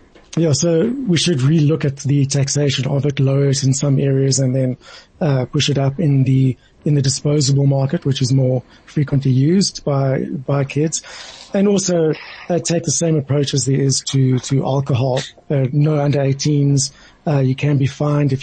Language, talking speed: English, 195 wpm